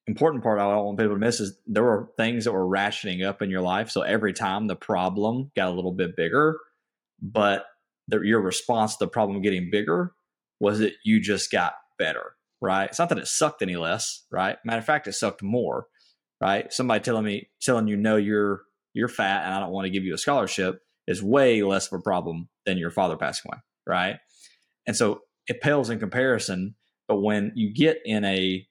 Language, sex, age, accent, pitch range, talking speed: English, male, 20-39, American, 95-115 Hz, 210 wpm